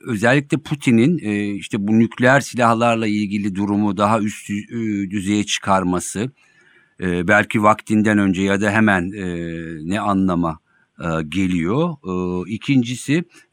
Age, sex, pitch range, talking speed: 50-69, male, 95-125 Hz, 100 wpm